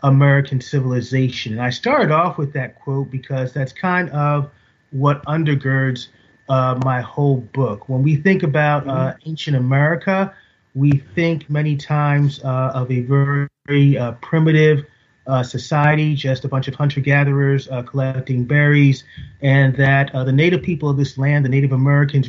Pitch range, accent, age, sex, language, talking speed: 125-145 Hz, American, 30-49, male, English, 155 wpm